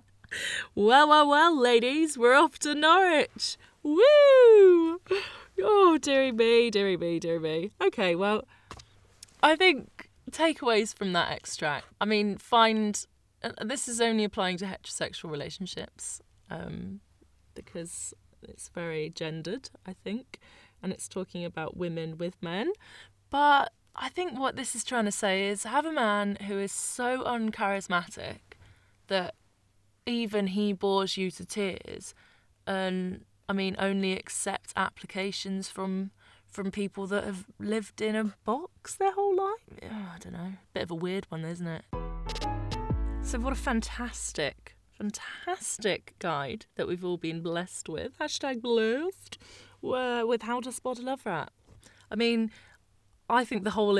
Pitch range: 180-250 Hz